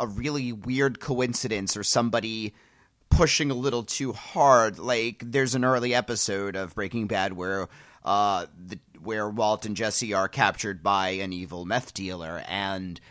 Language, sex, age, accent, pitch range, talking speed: English, male, 30-49, American, 115-150 Hz, 155 wpm